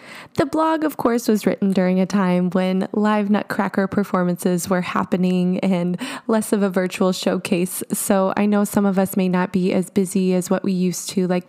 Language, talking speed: English, 200 wpm